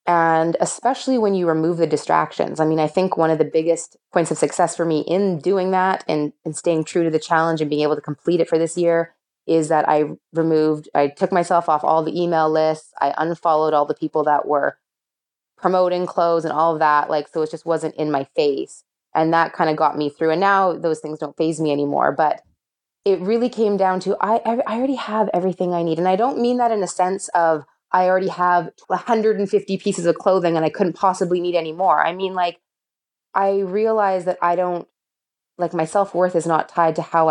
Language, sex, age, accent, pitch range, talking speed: English, female, 20-39, American, 155-185 Hz, 225 wpm